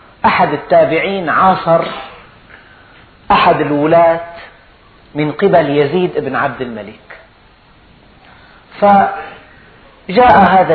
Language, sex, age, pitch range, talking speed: Arabic, male, 40-59, 150-195 Hz, 75 wpm